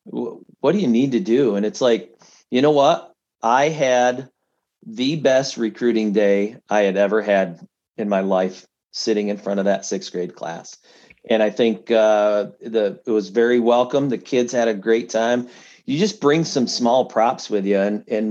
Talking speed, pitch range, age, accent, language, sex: 190 wpm, 105-135 Hz, 40-59, American, English, male